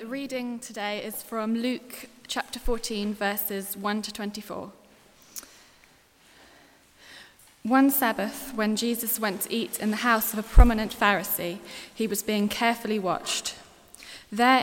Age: 20-39